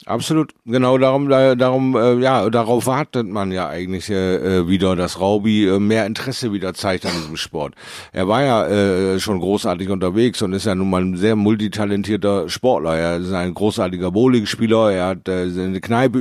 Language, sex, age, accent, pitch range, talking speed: German, male, 50-69, German, 95-115 Hz, 185 wpm